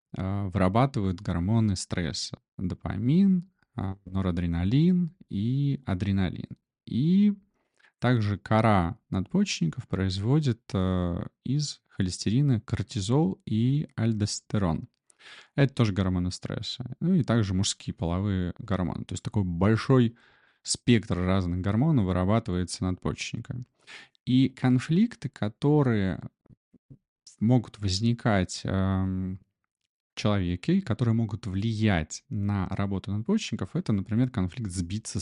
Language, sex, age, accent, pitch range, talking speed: Russian, male, 20-39, native, 90-125 Hz, 90 wpm